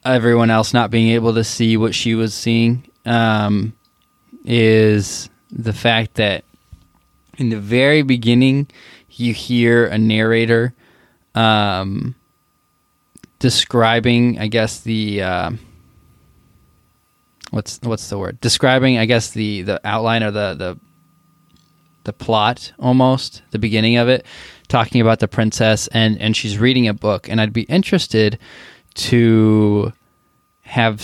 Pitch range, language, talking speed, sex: 110-120 Hz, English, 130 wpm, male